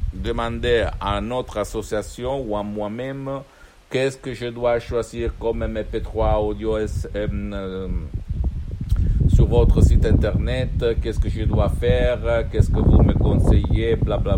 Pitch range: 90-110 Hz